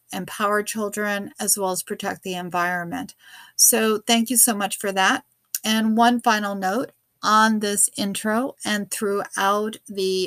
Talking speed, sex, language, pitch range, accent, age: 145 wpm, female, English, 195-235 Hz, American, 40-59